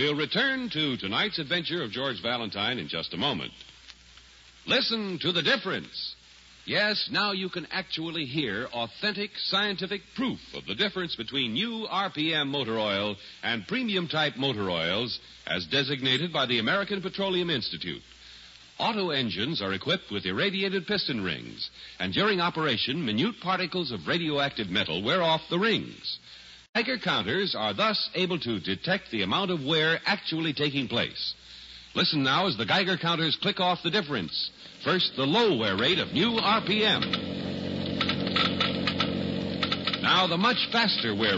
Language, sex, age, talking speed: English, male, 60-79, 150 wpm